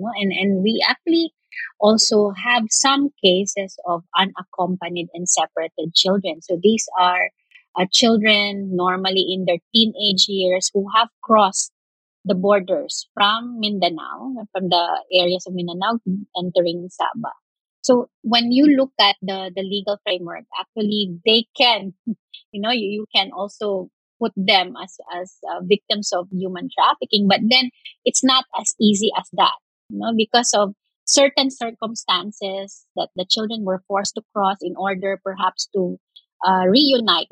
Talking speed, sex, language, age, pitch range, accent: 145 wpm, female, English, 30-49, 180-220 Hz, Filipino